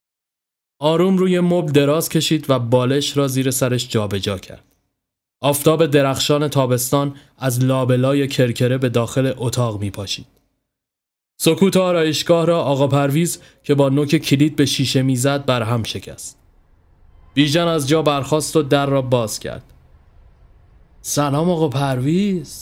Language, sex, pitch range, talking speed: Persian, male, 110-155 Hz, 135 wpm